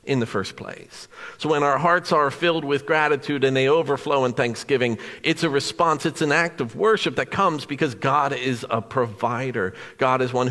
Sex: male